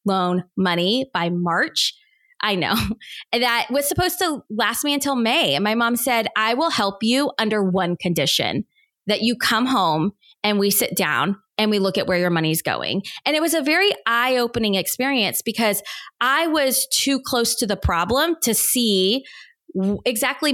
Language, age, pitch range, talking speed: English, 20-39, 190-250 Hz, 175 wpm